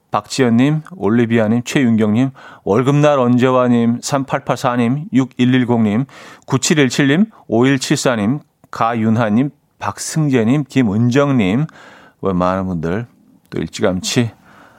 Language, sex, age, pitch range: Korean, male, 40-59, 105-145 Hz